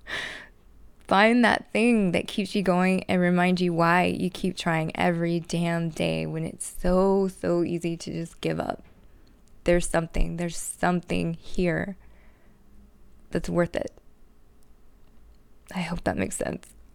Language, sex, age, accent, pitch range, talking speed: English, female, 20-39, American, 165-185 Hz, 140 wpm